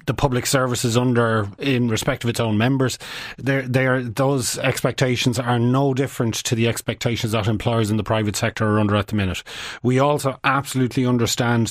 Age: 30-49